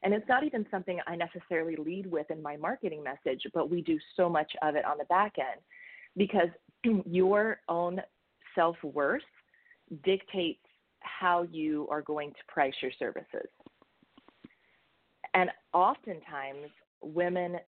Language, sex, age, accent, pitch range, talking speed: English, female, 30-49, American, 150-190 Hz, 135 wpm